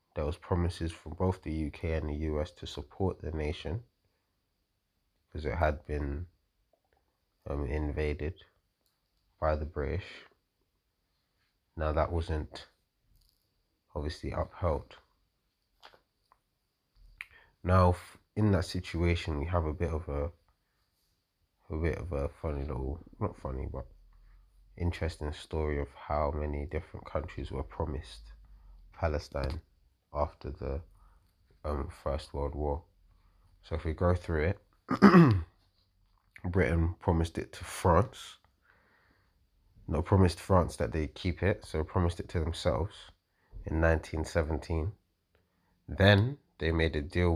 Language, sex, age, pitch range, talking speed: English, male, 20-39, 80-95 Hz, 120 wpm